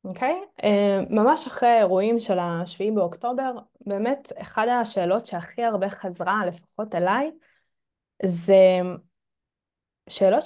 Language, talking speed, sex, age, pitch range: Hebrew, 105 wpm, female, 20-39, 185-240 Hz